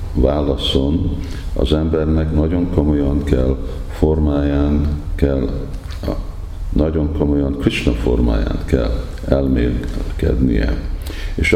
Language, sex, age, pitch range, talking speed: Hungarian, male, 50-69, 65-80 Hz, 80 wpm